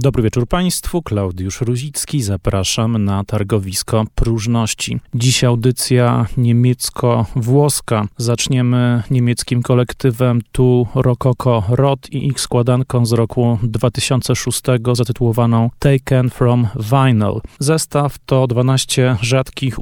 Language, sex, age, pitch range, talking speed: Polish, male, 30-49, 120-135 Hz, 95 wpm